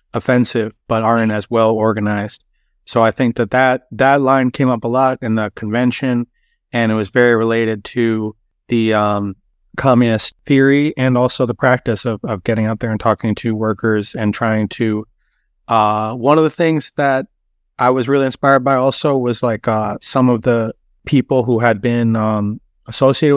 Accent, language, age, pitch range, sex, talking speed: American, English, 30-49, 110-125 Hz, male, 180 wpm